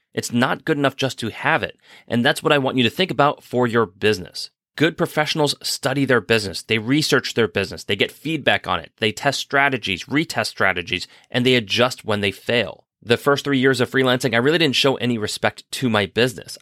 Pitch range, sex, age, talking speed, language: 110-135 Hz, male, 30-49, 215 wpm, English